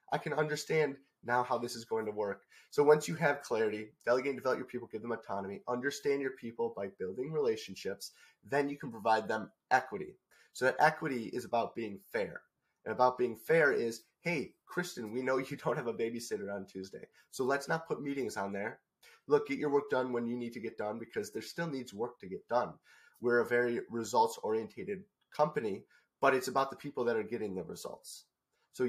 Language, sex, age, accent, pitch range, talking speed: English, male, 30-49, American, 115-150 Hz, 210 wpm